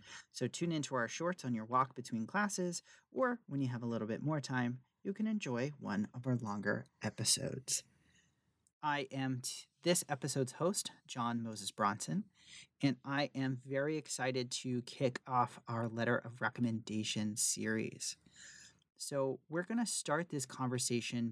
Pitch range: 115-150 Hz